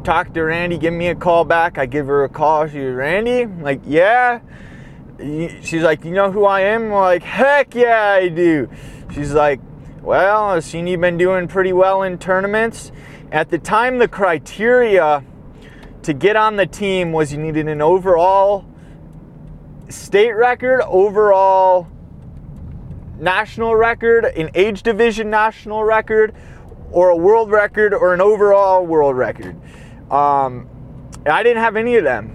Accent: American